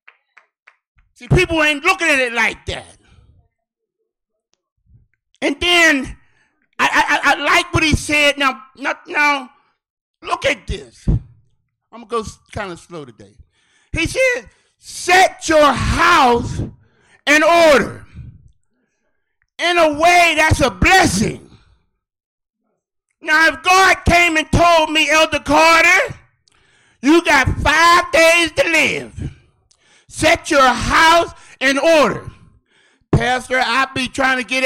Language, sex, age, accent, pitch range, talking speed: English, male, 50-69, American, 255-320 Hz, 115 wpm